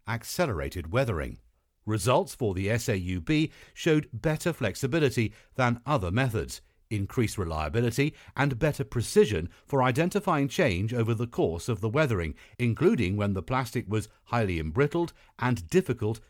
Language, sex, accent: English, male, British